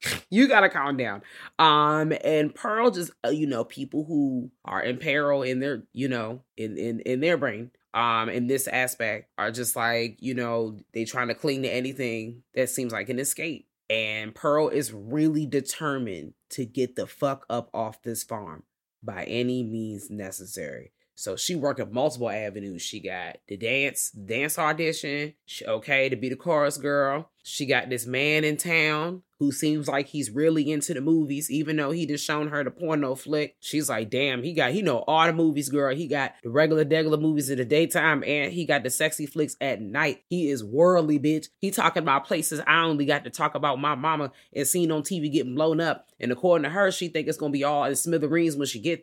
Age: 20-39